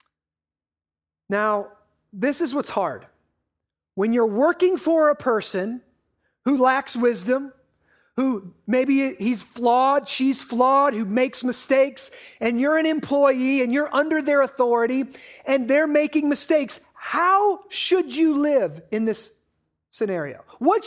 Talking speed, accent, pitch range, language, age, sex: 125 wpm, American, 215-290 Hz, English, 40-59, male